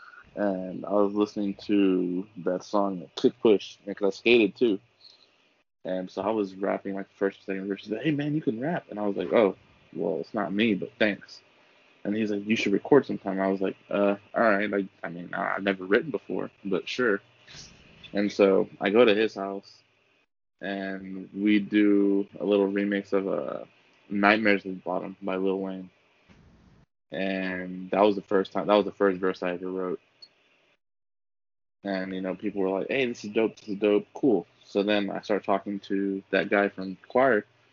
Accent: American